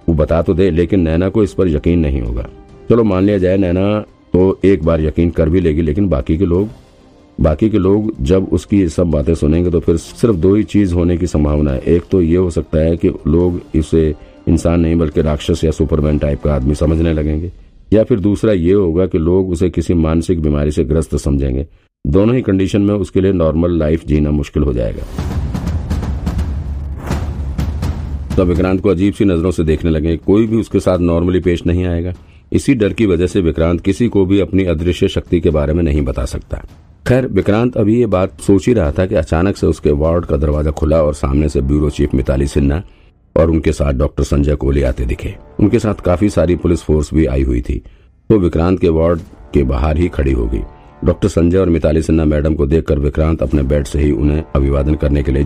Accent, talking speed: native, 215 wpm